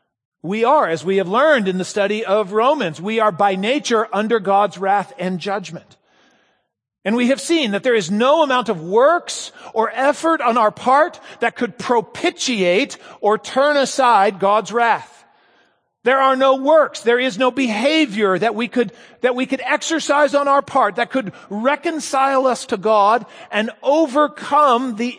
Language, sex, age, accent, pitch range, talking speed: English, male, 40-59, American, 195-270 Hz, 170 wpm